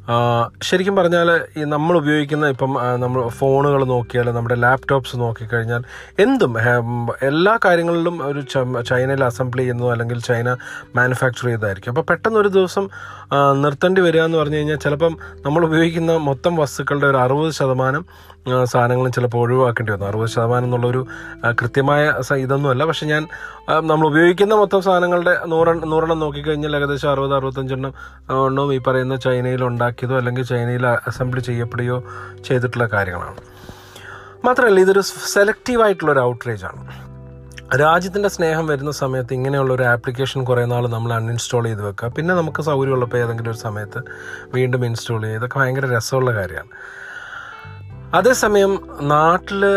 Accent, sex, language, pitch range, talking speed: native, male, Malayalam, 120-155 Hz, 120 wpm